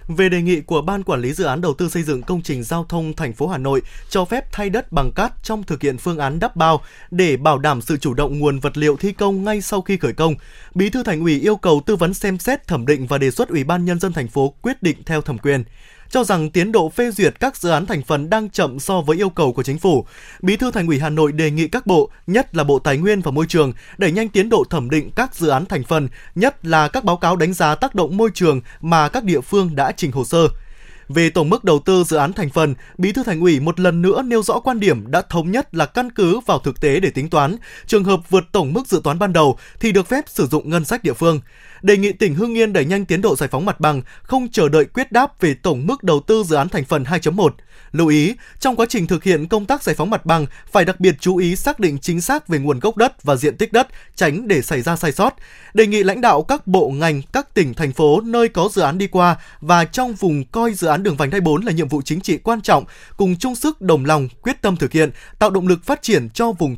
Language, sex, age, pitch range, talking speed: Vietnamese, male, 20-39, 150-205 Hz, 275 wpm